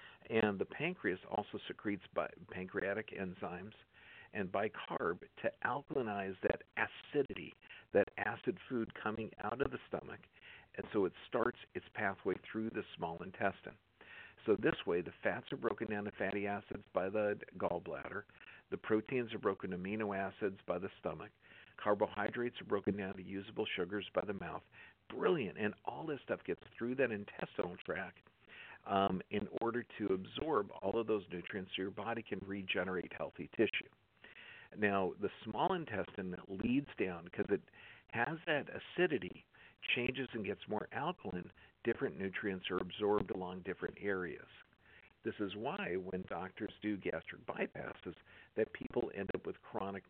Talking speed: 155 wpm